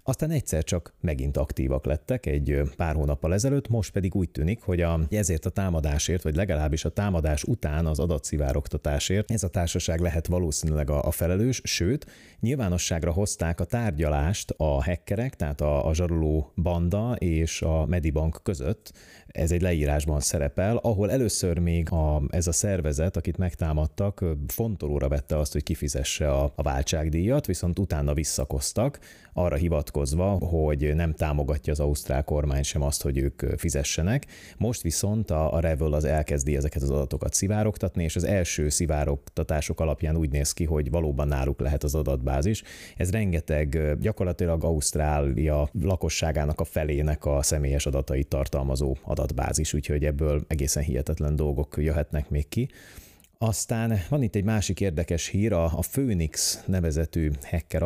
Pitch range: 75-90 Hz